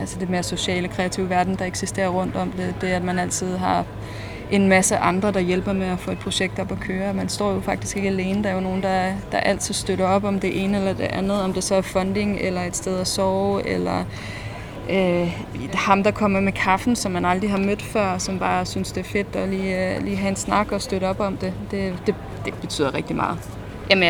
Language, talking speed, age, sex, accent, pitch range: Danish, 235 wpm, 20-39, female, native, 180-200 Hz